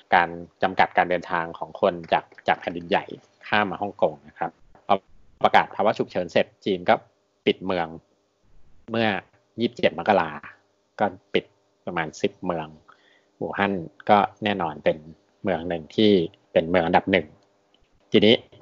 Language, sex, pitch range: Thai, male, 85-105 Hz